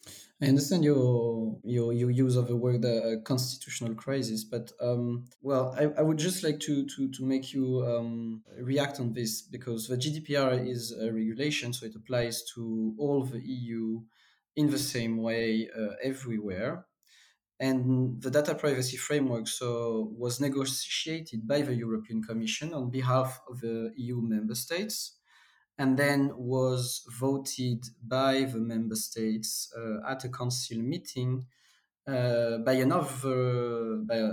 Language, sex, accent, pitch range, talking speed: English, male, French, 115-135 Hz, 150 wpm